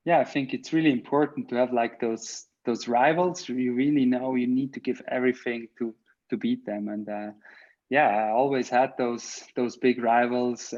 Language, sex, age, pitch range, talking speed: English, male, 20-39, 120-130 Hz, 190 wpm